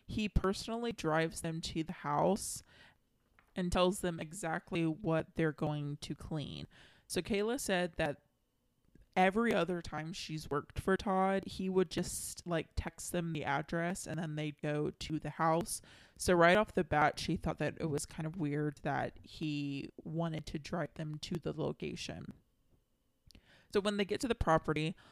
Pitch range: 155-185 Hz